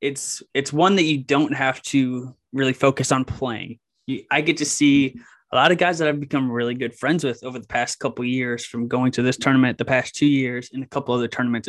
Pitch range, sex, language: 130-145 Hz, male, English